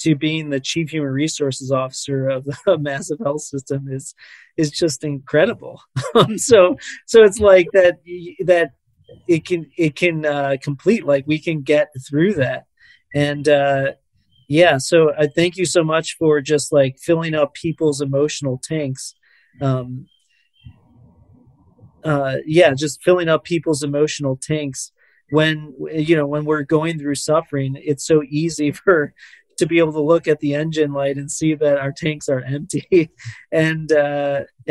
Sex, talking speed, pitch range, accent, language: male, 155 wpm, 140-160 Hz, American, English